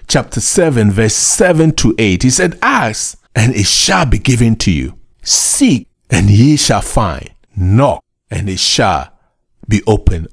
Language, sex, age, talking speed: English, male, 50-69, 155 wpm